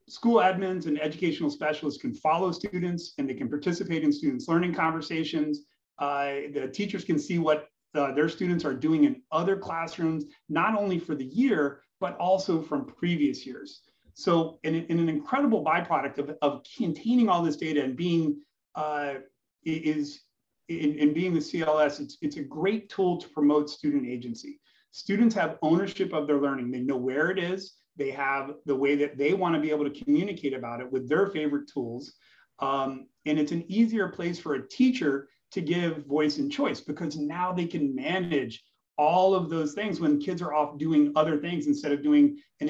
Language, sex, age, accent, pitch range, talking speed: English, male, 30-49, American, 145-180 Hz, 185 wpm